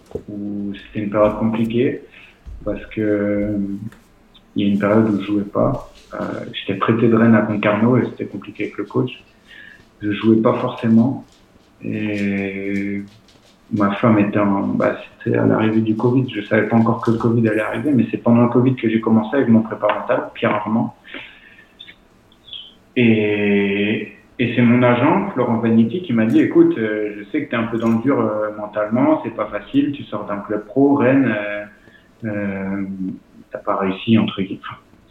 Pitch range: 105-115 Hz